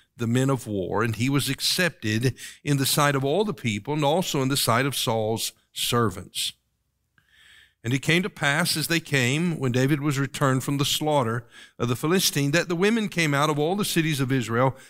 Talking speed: 210 wpm